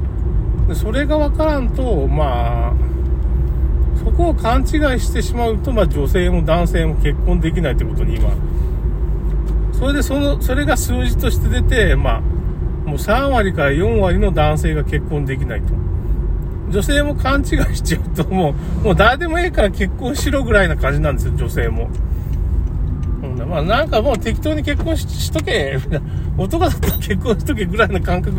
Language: Japanese